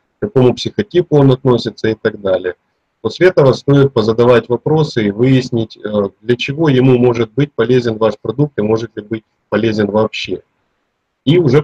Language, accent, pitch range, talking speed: Russian, native, 110-135 Hz, 160 wpm